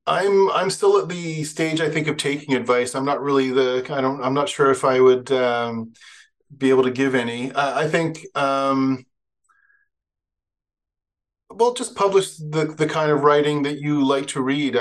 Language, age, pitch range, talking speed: English, 30-49, 125-140 Hz, 185 wpm